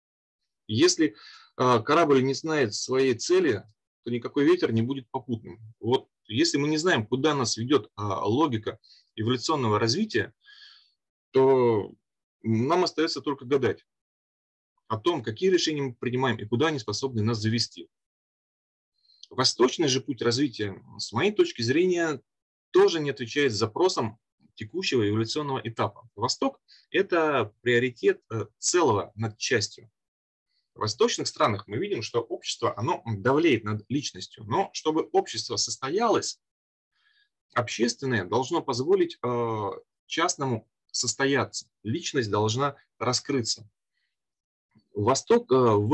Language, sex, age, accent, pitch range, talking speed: Russian, male, 30-49, native, 115-180 Hz, 115 wpm